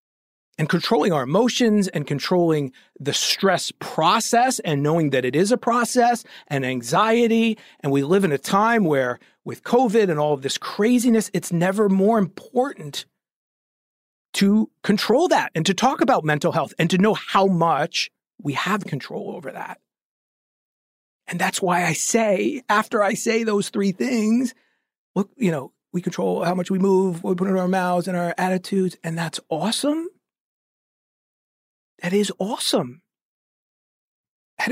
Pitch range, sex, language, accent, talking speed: 170-235 Hz, male, English, American, 155 wpm